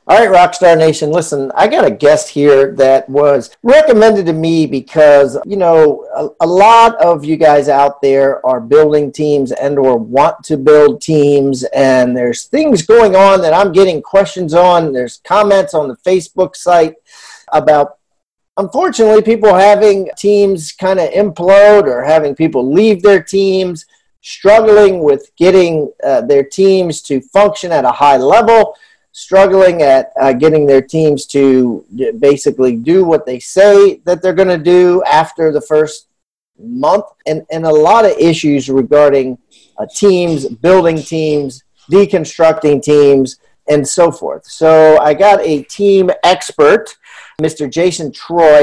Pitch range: 145-195 Hz